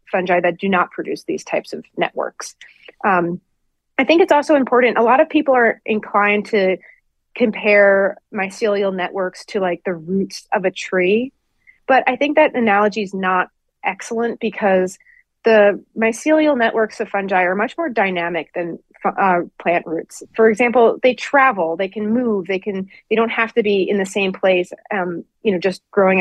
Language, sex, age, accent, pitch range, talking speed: English, female, 30-49, American, 185-230 Hz, 175 wpm